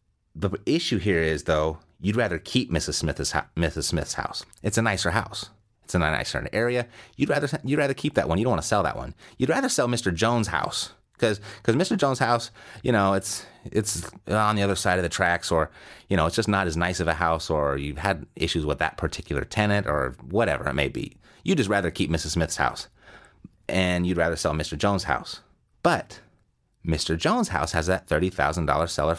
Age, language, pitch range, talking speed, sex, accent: 30-49, English, 85-115 Hz, 215 wpm, male, American